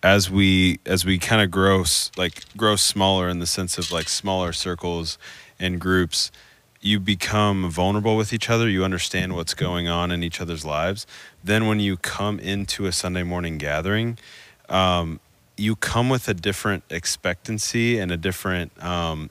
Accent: American